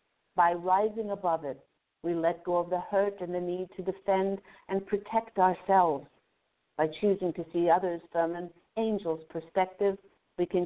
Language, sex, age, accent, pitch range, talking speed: English, female, 60-79, American, 170-210 Hz, 165 wpm